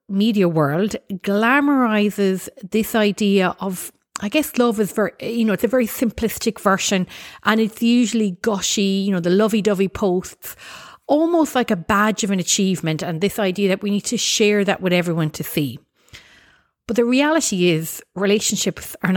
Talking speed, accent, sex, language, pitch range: 165 wpm, Irish, female, English, 180-230 Hz